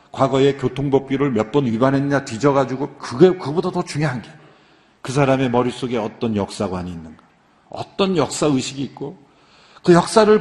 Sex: male